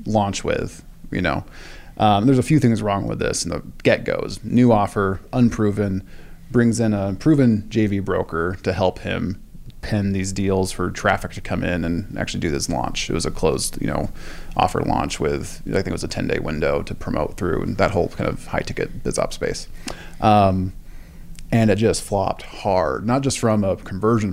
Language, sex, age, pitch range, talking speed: English, male, 20-39, 95-105 Hz, 195 wpm